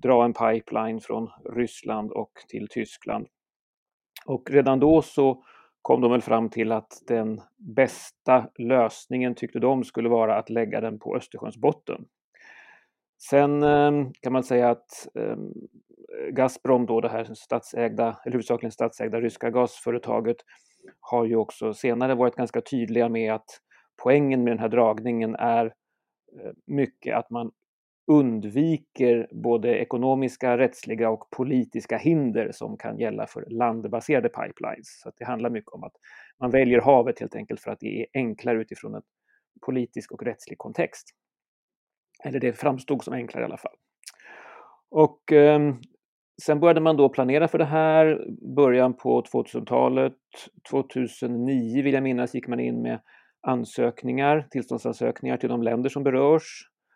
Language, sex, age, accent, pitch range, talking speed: Swedish, male, 30-49, native, 115-135 Hz, 140 wpm